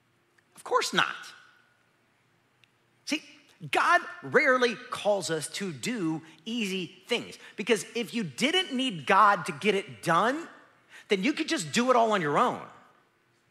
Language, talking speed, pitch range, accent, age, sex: English, 140 wpm, 150-235 Hz, American, 40-59, male